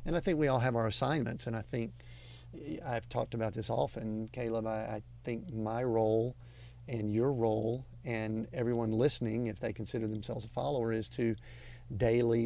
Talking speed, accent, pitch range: 180 wpm, American, 115-125 Hz